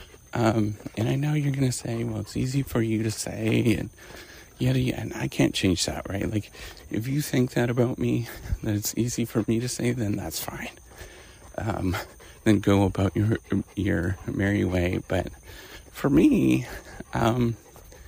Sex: male